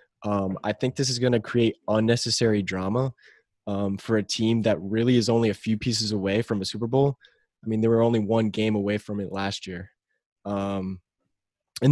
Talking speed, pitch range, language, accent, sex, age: 200 wpm, 100-120 Hz, English, American, male, 20-39